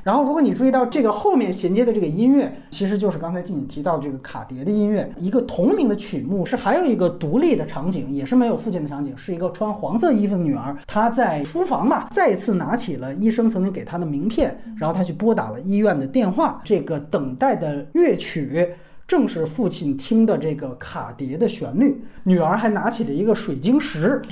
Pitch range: 145-235 Hz